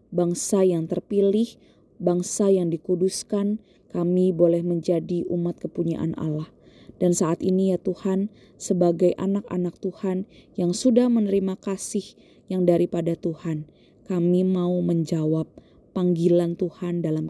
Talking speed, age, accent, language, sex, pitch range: 115 wpm, 20-39, native, Indonesian, female, 175-200 Hz